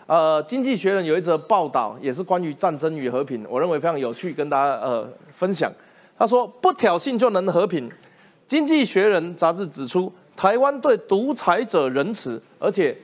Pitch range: 160-220 Hz